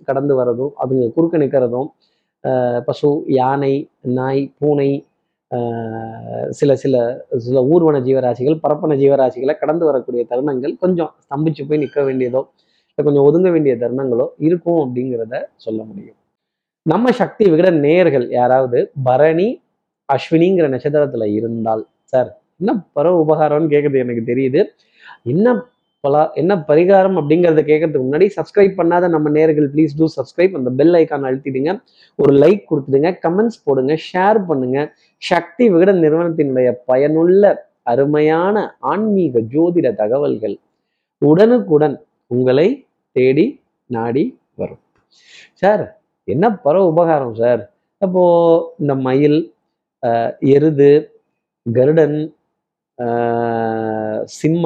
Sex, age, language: male, 20-39, Tamil